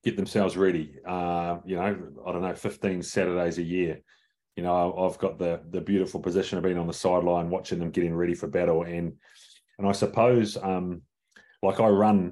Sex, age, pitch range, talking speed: male, 30-49, 90-100 Hz, 195 wpm